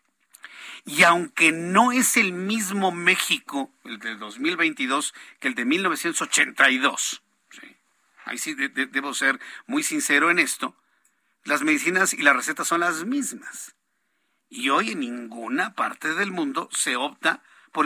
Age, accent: 50-69, Mexican